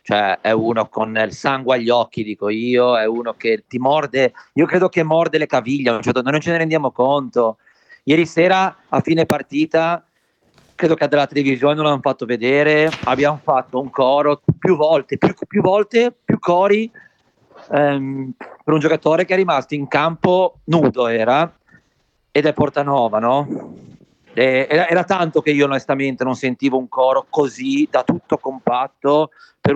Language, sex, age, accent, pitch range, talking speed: Italian, male, 40-59, native, 135-175 Hz, 165 wpm